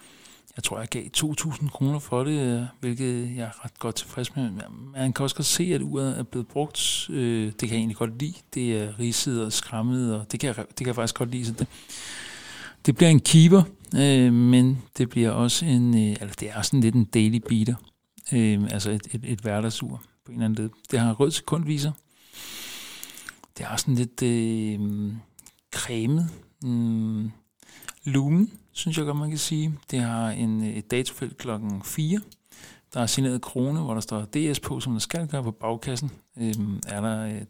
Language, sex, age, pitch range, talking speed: Danish, male, 60-79, 110-140 Hz, 185 wpm